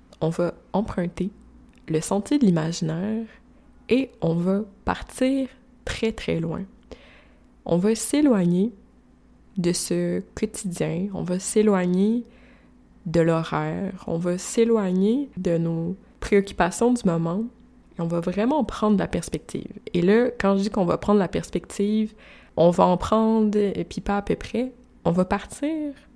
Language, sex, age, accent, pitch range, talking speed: French, female, 20-39, Canadian, 180-240 Hz, 145 wpm